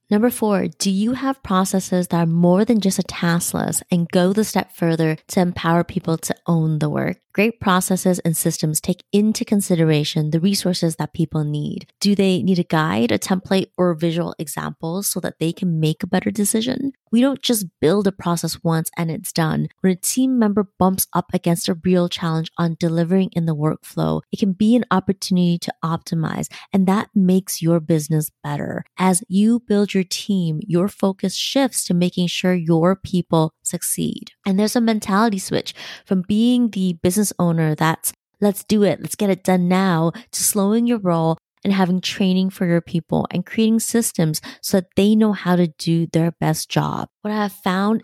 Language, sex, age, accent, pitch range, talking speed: English, female, 30-49, American, 170-205 Hz, 190 wpm